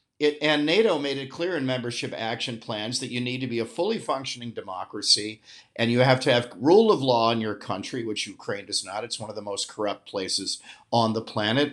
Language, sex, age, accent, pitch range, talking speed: English, male, 50-69, American, 115-145 Hz, 220 wpm